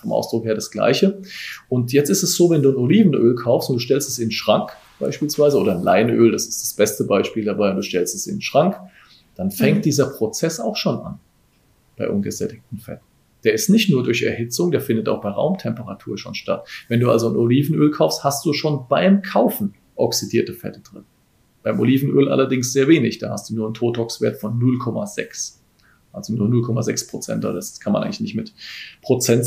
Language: German